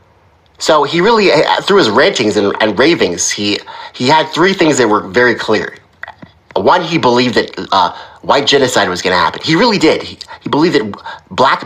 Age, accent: 30-49, American